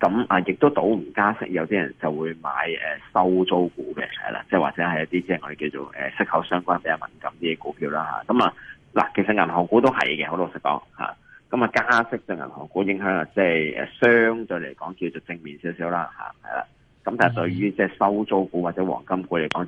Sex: male